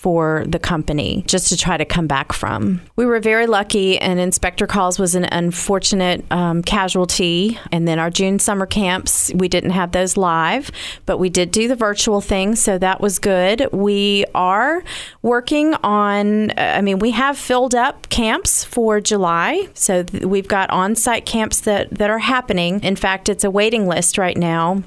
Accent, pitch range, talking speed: American, 175-205 Hz, 180 wpm